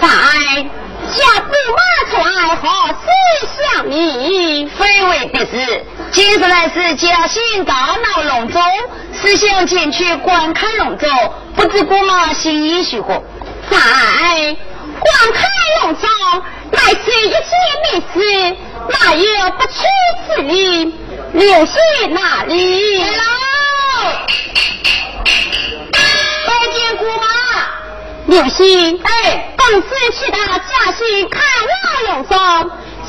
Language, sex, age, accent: Chinese, female, 40-59, native